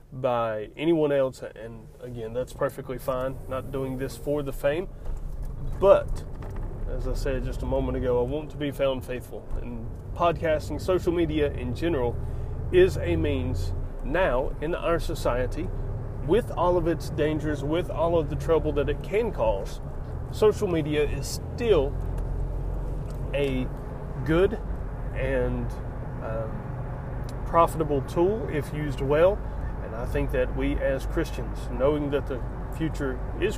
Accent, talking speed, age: American, 140 wpm, 30-49